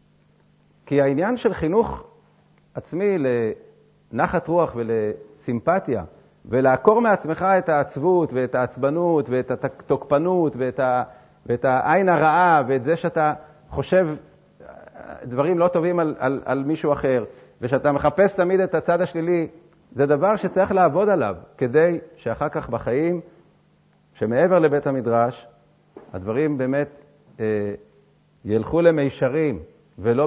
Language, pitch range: Hebrew, 135-175 Hz